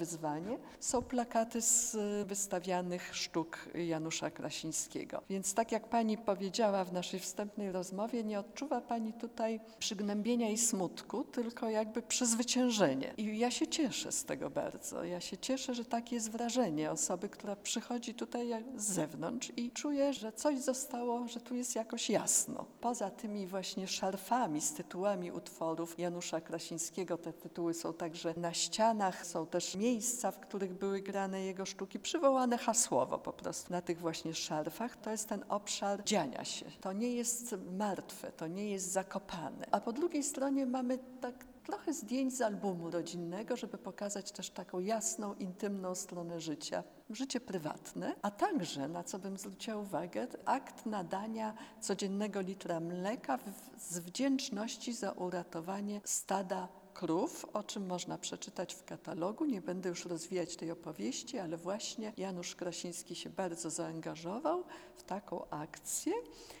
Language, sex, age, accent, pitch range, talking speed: Polish, female, 50-69, native, 180-240 Hz, 150 wpm